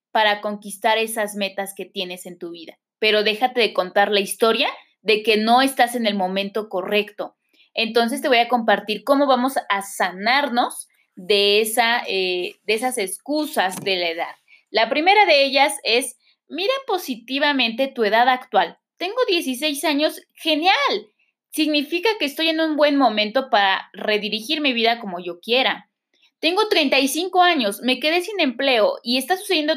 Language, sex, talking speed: Spanish, female, 155 wpm